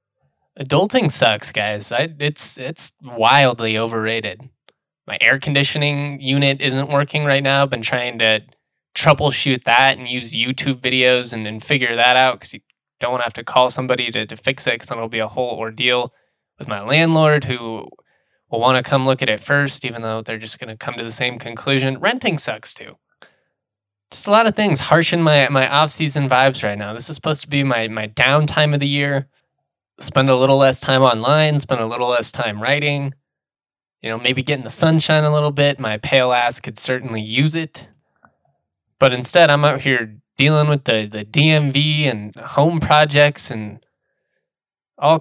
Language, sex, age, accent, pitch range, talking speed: English, male, 10-29, American, 115-145 Hz, 190 wpm